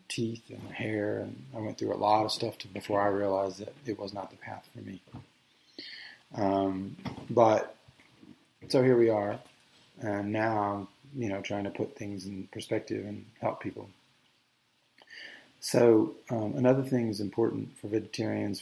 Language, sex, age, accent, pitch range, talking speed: English, male, 30-49, American, 105-120 Hz, 160 wpm